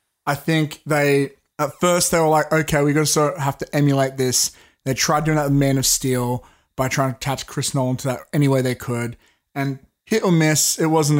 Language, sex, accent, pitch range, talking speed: English, male, Australian, 130-150 Hz, 235 wpm